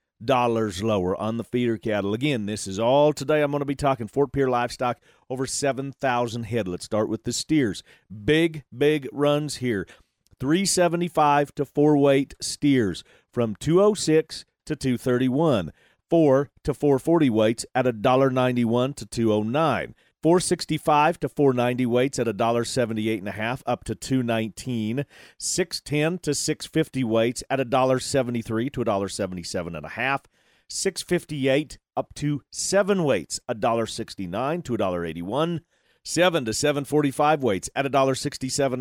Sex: male